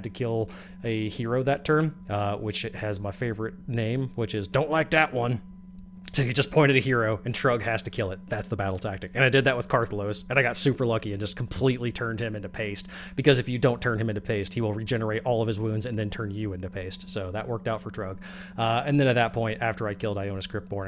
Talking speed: 260 wpm